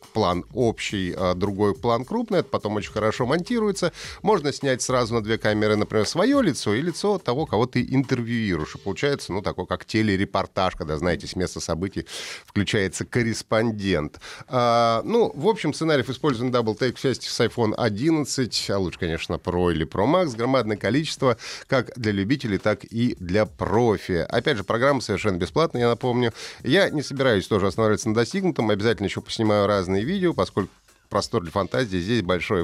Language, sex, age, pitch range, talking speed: Russian, male, 30-49, 95-130 Hz, 165 wpm